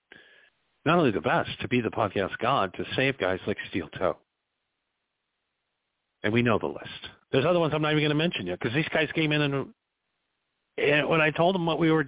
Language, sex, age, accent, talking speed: English, male, 50-69, American, 220 wpm